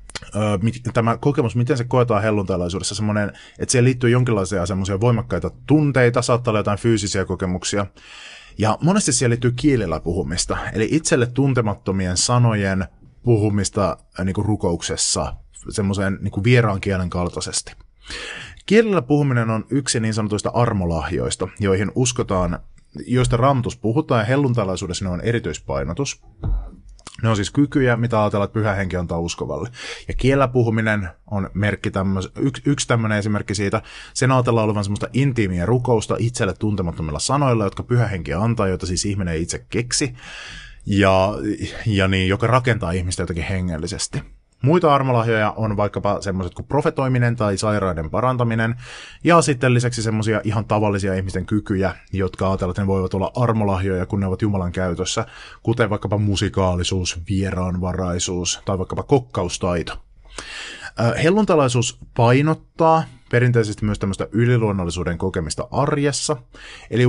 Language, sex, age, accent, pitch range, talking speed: Finnish, male, 30-49, native, 95-120 Hz, 125 wpm